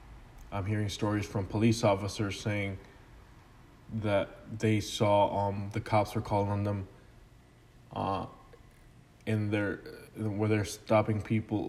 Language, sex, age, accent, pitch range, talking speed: English, male, 20-39, American, 105-120 Hz, 125 wpm